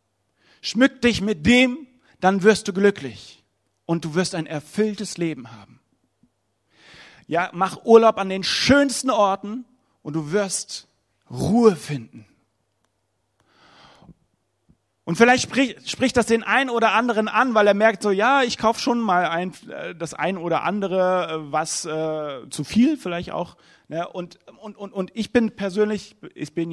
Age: 40-59